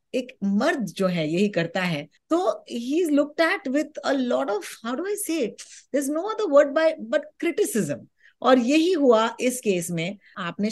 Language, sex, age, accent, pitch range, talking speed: Hindi, female, 20-39, native, 190-275 Hz, 150 wpm